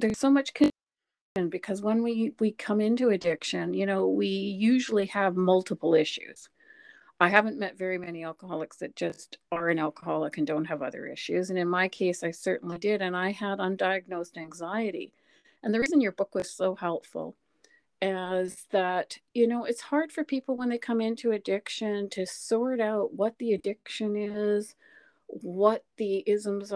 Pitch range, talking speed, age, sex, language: 185-220 Hz, 175 wpm, 50-69, female, English